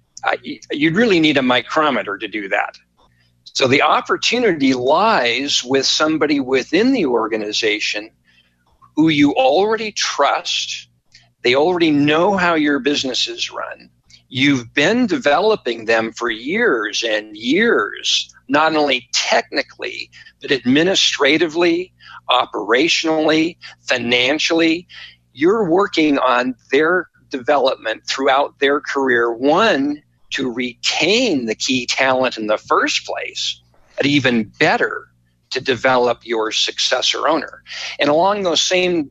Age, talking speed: 50-69, 115 wpm